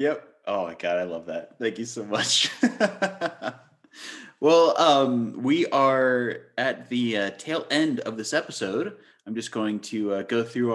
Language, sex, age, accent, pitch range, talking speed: English, male, 30-49, American, 100-140 Hz, 170 wpm